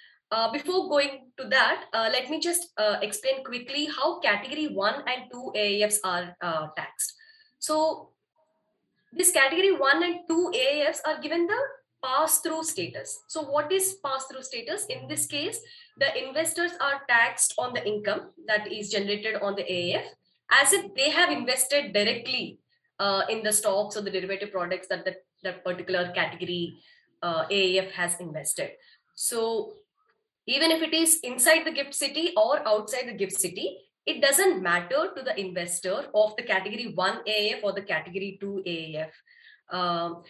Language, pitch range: English, 200-315 Hz